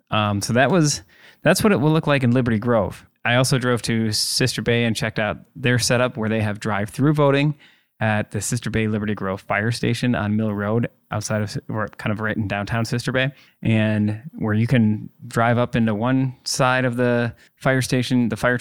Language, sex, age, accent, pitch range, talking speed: English, male, 20-39, American, 110-130 Hz, 210 wpm